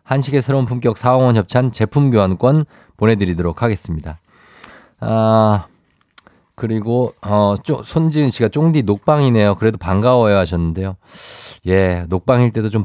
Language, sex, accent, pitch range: Korean, male, native, 95-135 Hz